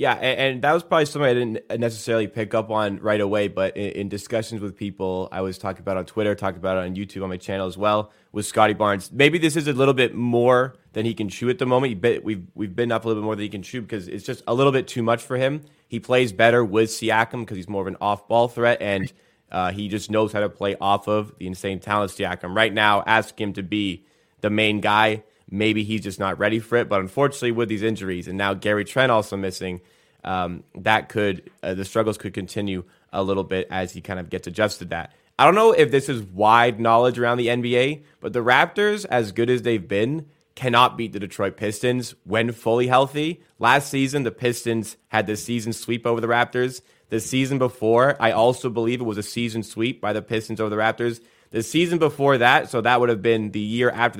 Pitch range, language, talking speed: 100-120 Hz, English, 235 wpm